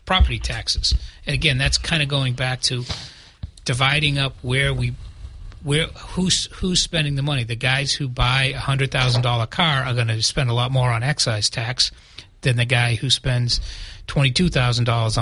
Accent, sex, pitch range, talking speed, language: American, male, 115-135 Hz, 170 wpm, English